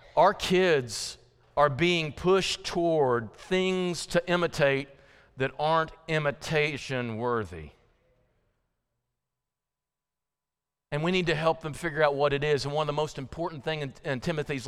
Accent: American